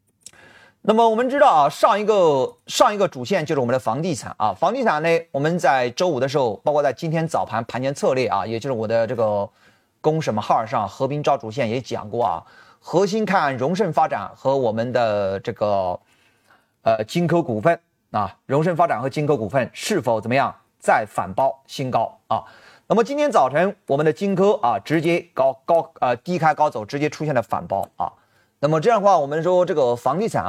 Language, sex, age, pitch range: Chinese, male, 30-49, 125-180 Hz